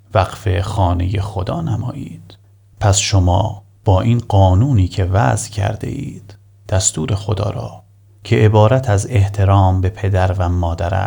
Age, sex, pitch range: 30-49, male, 95-110 Hz